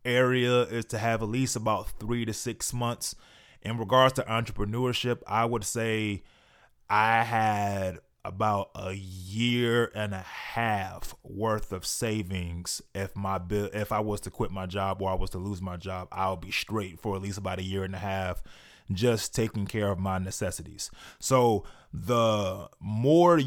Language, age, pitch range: English, 20-39, 100-125 Hz